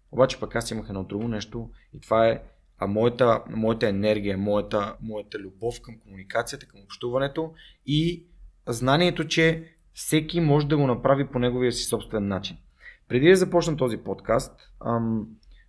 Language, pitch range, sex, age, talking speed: Bulgarian, 105-130 Hz, male, 30-49, 155 wpm